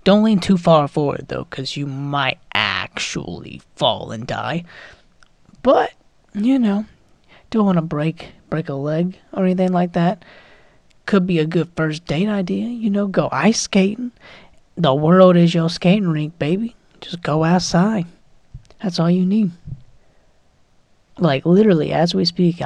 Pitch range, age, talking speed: 145-185 Hz, 30-49, 155 wpm